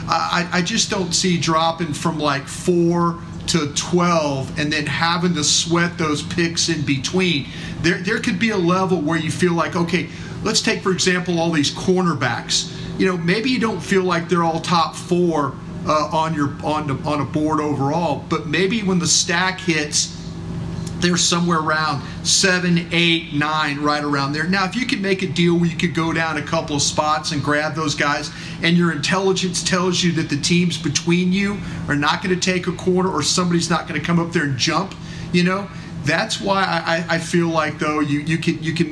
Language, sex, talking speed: English, male, 205 wpm